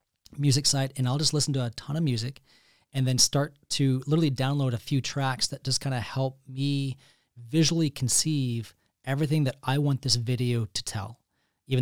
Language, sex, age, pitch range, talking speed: English, male, 30-49, 120-140 Hz, 190 wpm